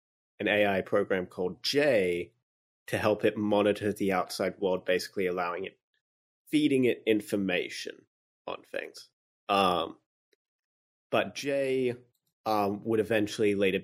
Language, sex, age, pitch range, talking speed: English, male, 30-49, 100-125 Hz, 115 wpm